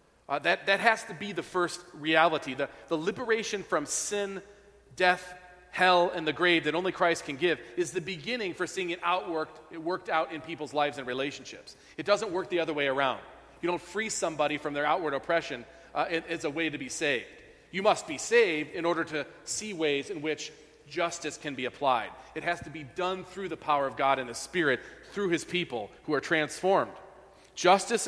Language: English